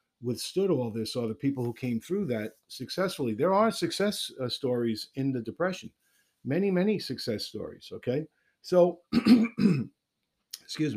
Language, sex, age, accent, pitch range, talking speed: English, male, 50-69, American, 120-155 Hz, 140 wpm